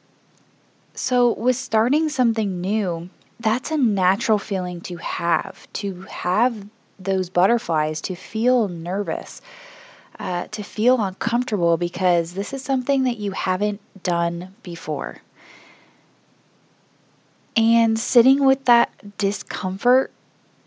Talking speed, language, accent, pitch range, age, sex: 105 wpm, English, American, 185-230 Hz, 20-39, female